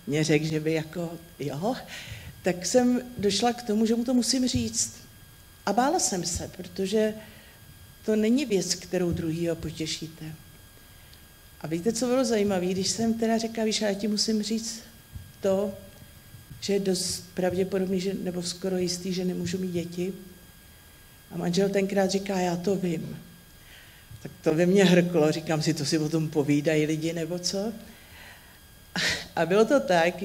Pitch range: 160-200 Hz